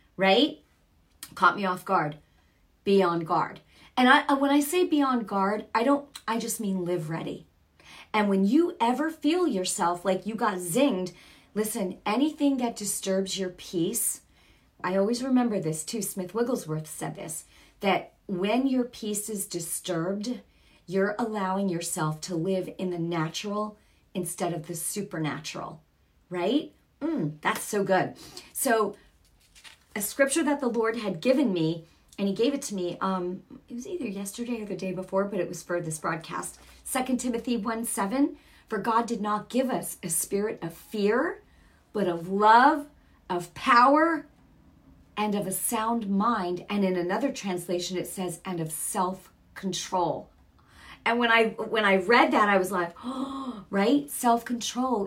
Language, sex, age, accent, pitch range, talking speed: English, female, 40-59, American, 180-240 Hz, 160 wpm